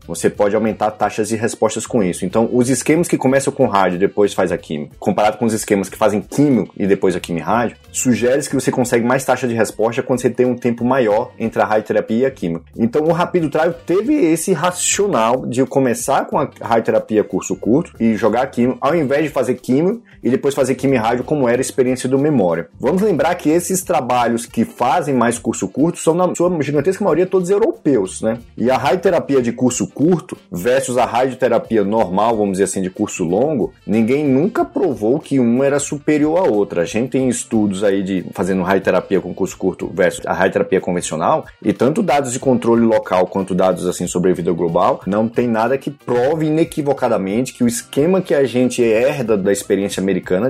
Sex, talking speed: male, 210 wpm